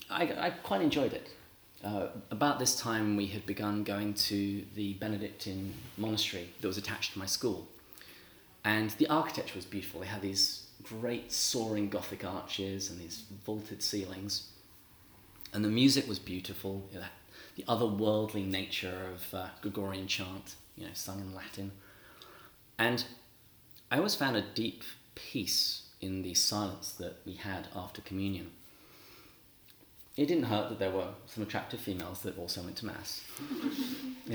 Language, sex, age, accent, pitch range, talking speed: English, male, 30-49, British, 95-110 Hz, 155 wpm